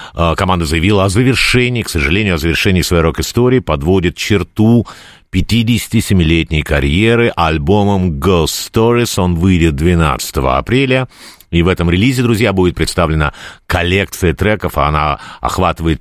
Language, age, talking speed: Russian, 50-69, 125 wpm